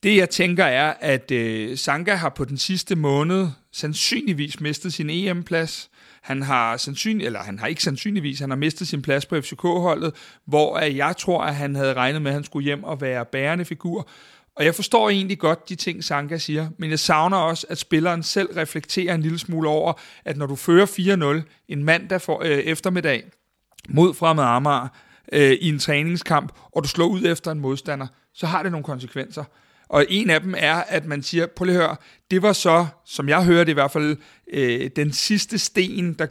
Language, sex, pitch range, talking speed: Danish, male, 145-180 Hz, 195 wpm